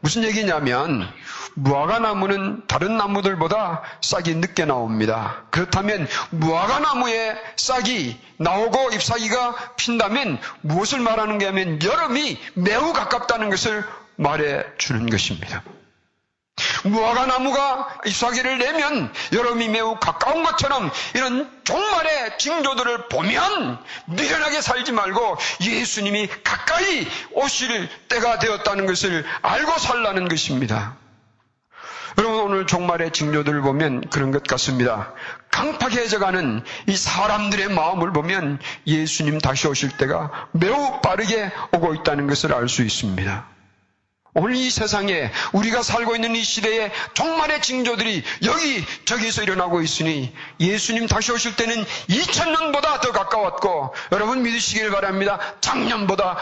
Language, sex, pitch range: Korean, male, 150-235 Hz